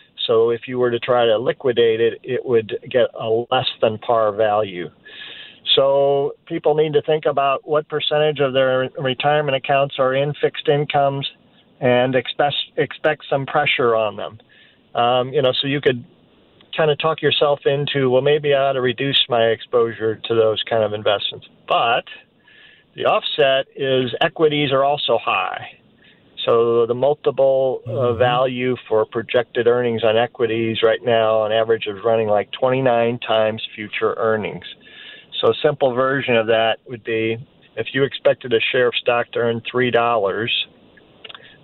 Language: English